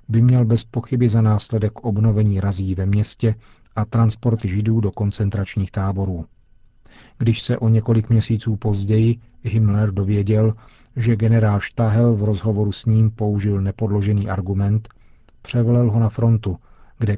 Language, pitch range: Czech, 100-115 Hz